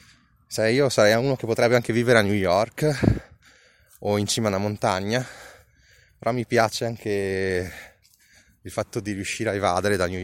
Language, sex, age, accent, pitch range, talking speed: Italian, male, 20-39, native, 95-120 Hz, 170 wpm